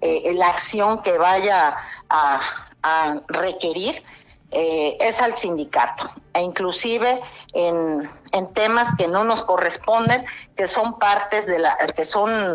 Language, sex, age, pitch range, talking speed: Spanish, female, 50-69, 175-225 Hz, 135 wpm